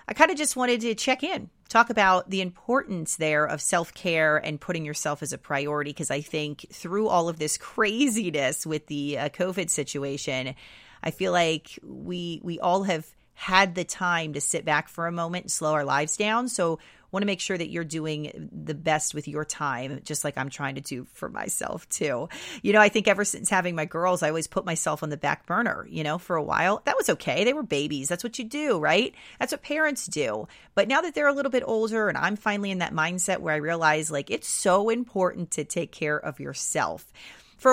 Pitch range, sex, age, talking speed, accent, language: 150-205 Hz, female, 30-49, 225 wpm, American, English